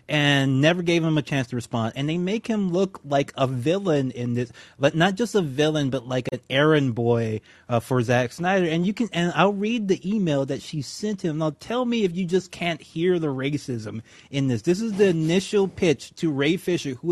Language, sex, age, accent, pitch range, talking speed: English, male, 30-49, American, 125-175 Hz, 220 wpm